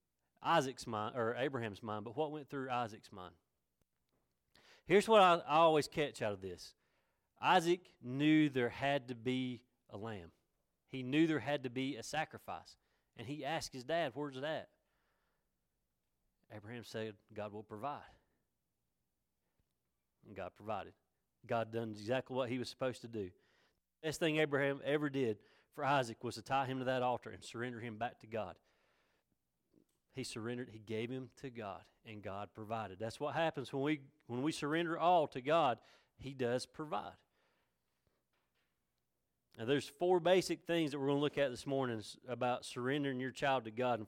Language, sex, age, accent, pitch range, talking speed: English, male, 30-49, American, 110-145 Hz, 170 wpm